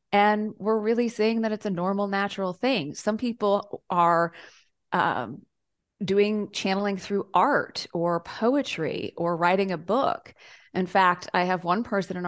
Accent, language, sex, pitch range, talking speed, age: American, English, female, 165-205 Hz, 150 wpm, 30-49